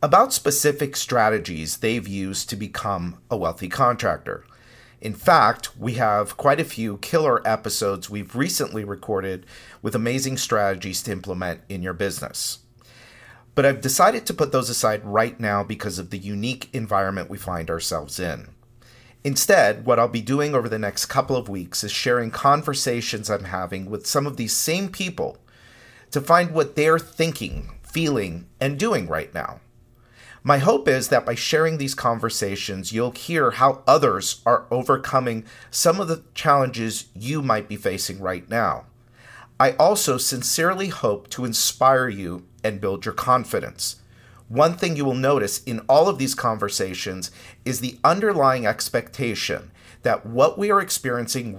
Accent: American